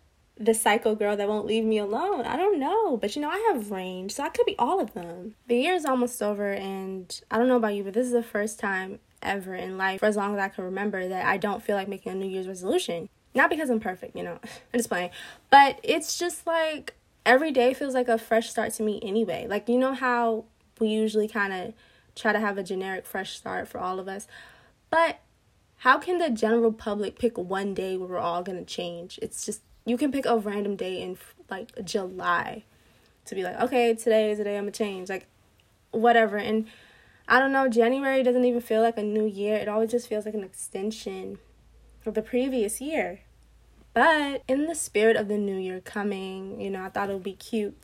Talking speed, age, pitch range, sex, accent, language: 225 wpm, 20-39, 195-240 Hz, female, American, English